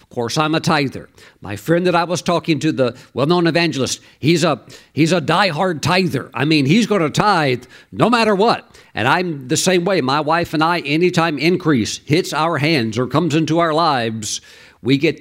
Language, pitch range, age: English, 130-175 Hz, 50-69